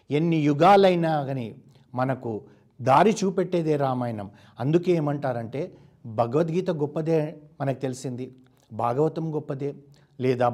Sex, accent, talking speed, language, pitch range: male, native, 85 wpm, Telugu, 130-170 Hz